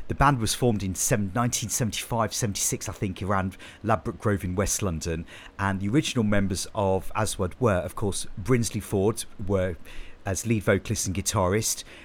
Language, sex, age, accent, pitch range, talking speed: English, male, 40-59, British, 95-110 Hz, 155 wpm